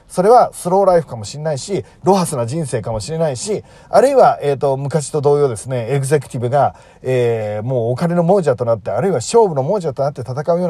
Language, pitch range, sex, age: Japanese, 125-175 Hz, male, 40-59